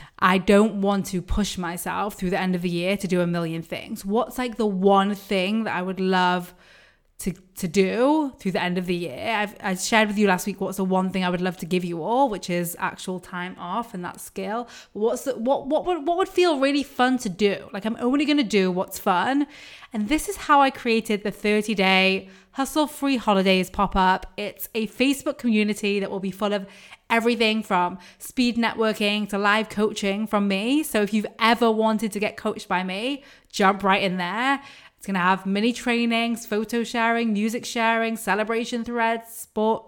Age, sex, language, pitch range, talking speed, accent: 20-39, female, English, 190-235 Hz, 210 wpm, British